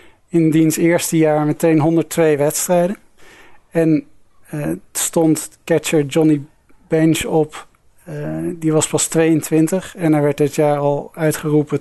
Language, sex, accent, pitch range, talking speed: Dutch, male, Dutch, 150-165 Hz, 130 wpm